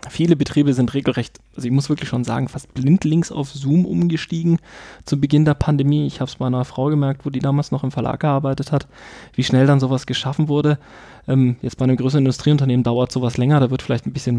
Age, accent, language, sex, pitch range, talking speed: 20-39, German, German, male, 130-155 Hz, 230 wpm